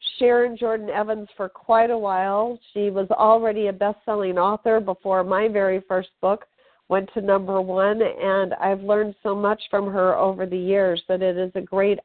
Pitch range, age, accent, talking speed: 190-230 Hz, 50-69, American, 190 wpm